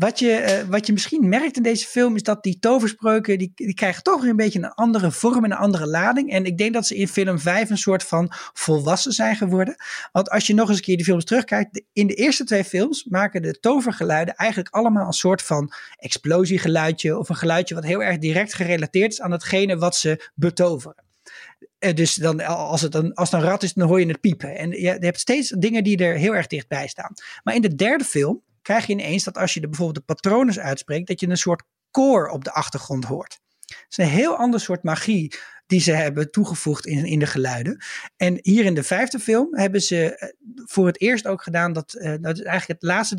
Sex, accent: male, Dutch